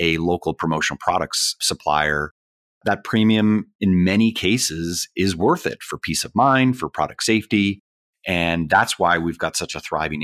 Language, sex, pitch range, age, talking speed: English, male, 75-90 Hz, 30-49, 165 wpm